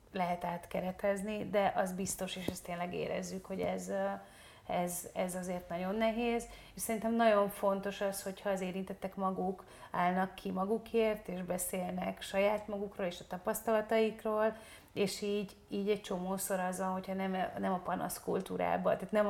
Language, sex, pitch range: Hungarian, female, 180-210 Hz